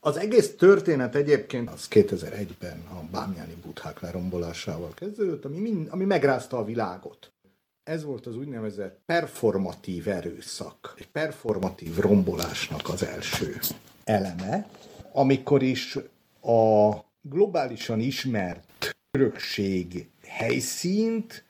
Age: 60-79